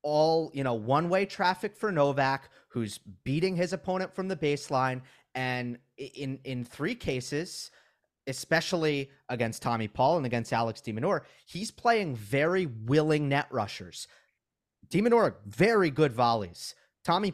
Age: 30-49